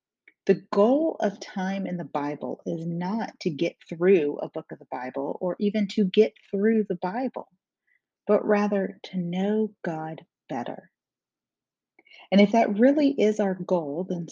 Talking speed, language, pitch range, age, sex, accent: 160 wpm, English, 175-230 Hz, 40-59, female, American